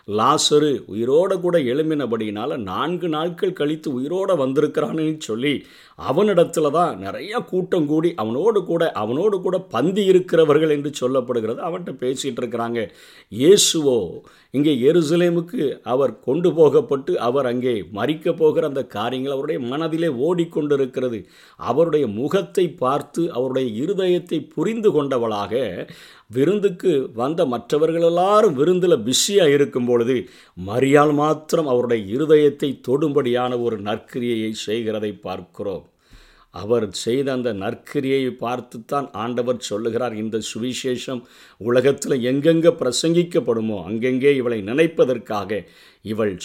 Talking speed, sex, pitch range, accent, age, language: 105 wpm, male, 120-165 Hz, native, 50-69, Tamil